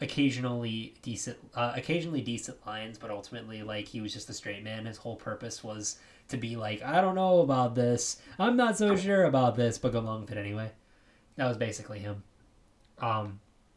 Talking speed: 190 wpm